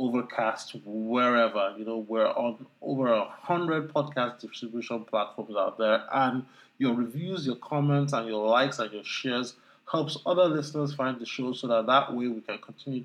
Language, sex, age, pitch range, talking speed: English, male, 20-39, 120-150 Hz, 170 wpm